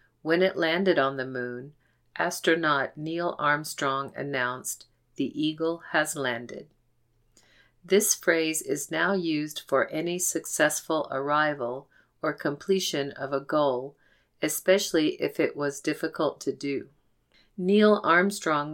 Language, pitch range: English, 140-175 Hz